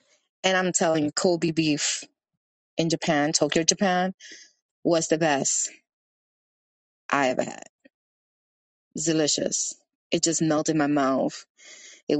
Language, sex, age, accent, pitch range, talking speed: English, female, 20-39, American, 160-200 Hz, 125 wpm